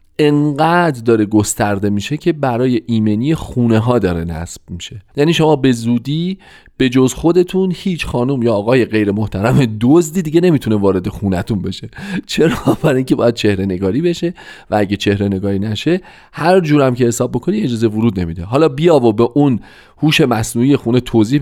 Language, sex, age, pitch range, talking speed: Persian, male, 40-59, 105-155 Hz, 170 wpm